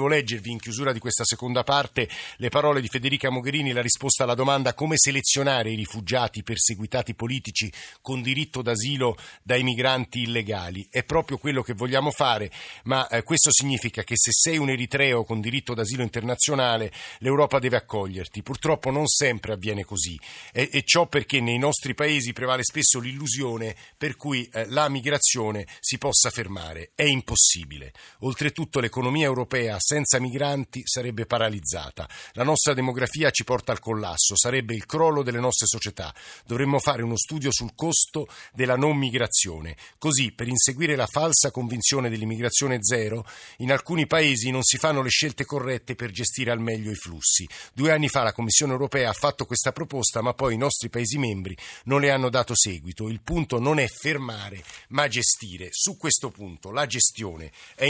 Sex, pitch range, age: male, 115-140 Hz, 50-69